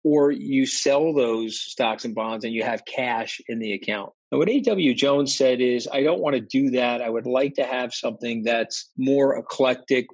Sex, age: male, 40-59